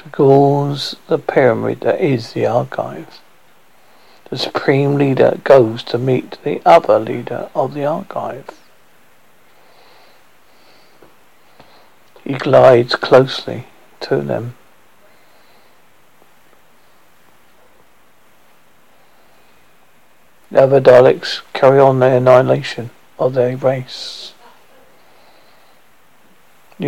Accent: British